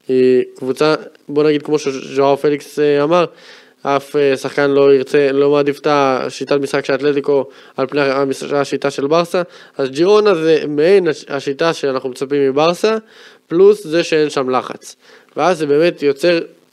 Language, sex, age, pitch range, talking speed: Hebrew, male, 20-39, 130-165 Hz, 145 wpm